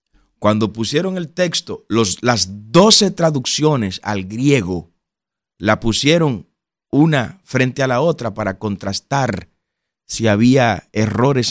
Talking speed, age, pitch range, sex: 110 wpm, 30-49, 100-145 Hz, male